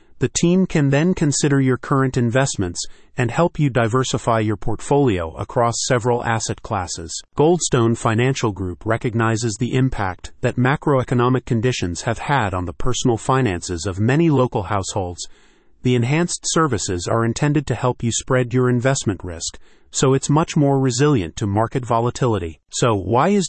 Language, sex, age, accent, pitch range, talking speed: English, male, 40-59, American, 110-135 Hz, 155 wpm